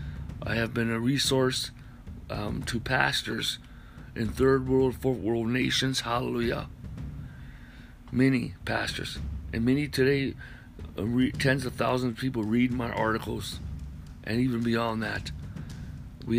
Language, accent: English, American